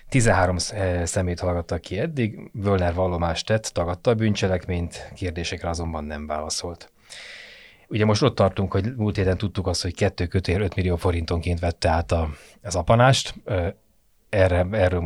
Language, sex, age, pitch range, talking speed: Hungarian, male, 30-49, 85-95 Hz, 135 wpm